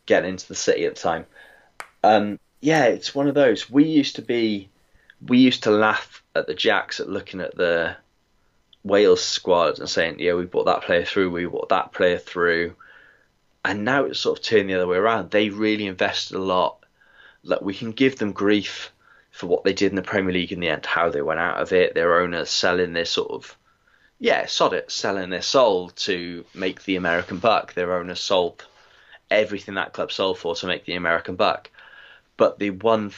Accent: British